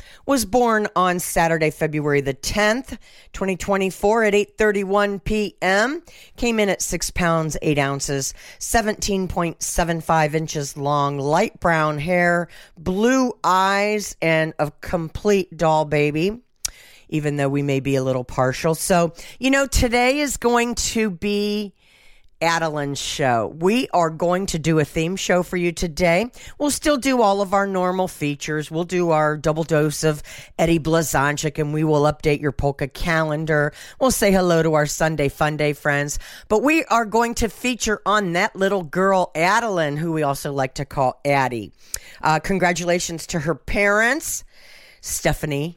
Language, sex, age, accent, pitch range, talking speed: English, female, 50-69, American, 145-195 Hz, 150 wpm